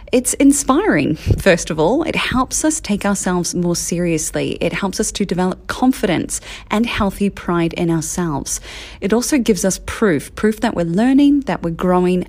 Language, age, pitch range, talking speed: English, 30-49, 170-210 Hz, 170 wpm